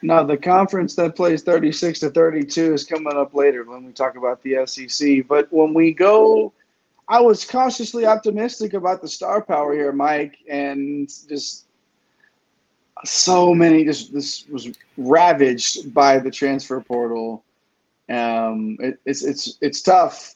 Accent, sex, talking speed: American, male, 155 wpm